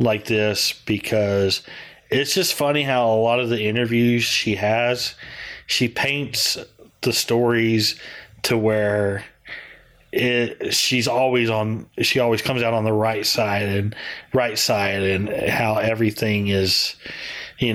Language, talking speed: English, 130 wpm